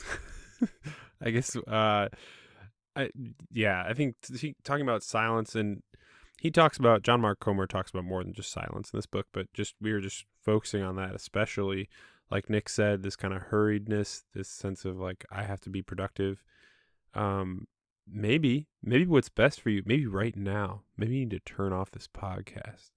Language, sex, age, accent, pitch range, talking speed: English, male, 10-29, American, 95-120 Hz, 185 wpm